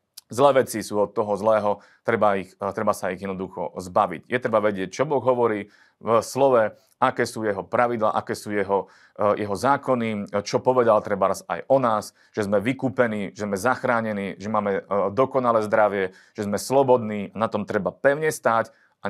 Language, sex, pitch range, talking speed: Slovak, male, 100-125 Hz, 175 wpm